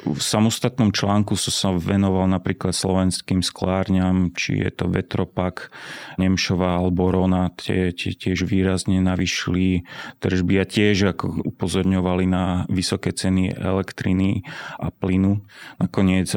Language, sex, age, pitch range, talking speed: Slovak, male, 30-49, 90-95 Hz, 120 wpm